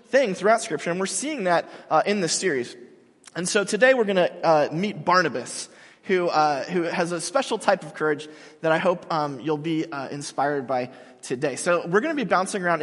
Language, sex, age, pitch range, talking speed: English, male, 20-39, 155-210 Hz, 205 wpm